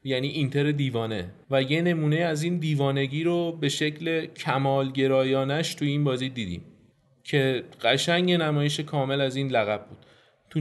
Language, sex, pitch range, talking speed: Persian, male, 130-150 Hz, 145 wpm